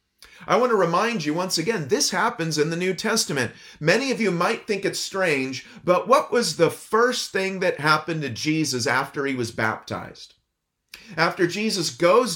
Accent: American